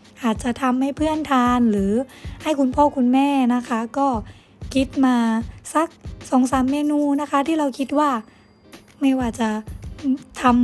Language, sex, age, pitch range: Thai, female, 20-39, 225-270 Hz